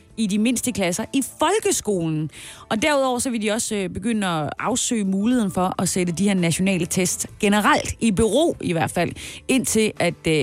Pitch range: 185-235 Hz